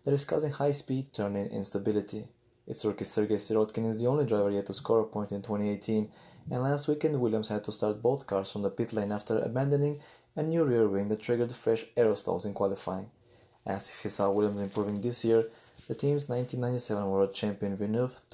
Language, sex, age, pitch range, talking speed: English, male, 20-39, 100-120 Hz, 185 wpm